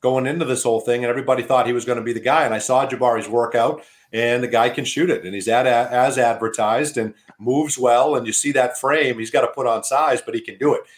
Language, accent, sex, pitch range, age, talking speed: English, American, male, 125-165 Hz, 40-59, 280 wpm